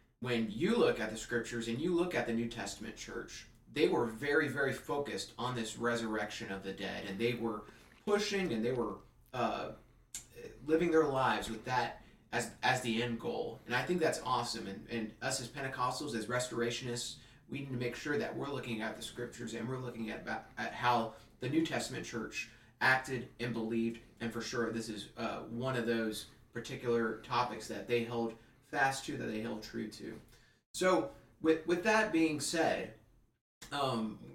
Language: English